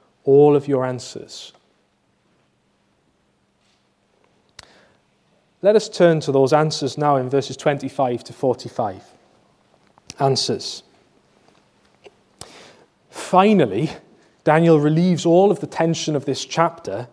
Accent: British